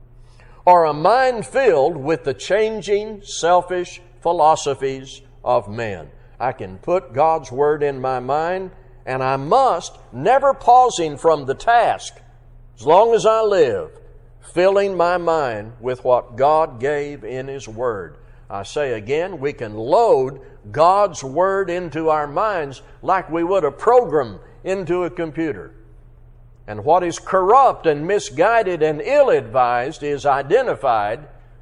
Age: 60-79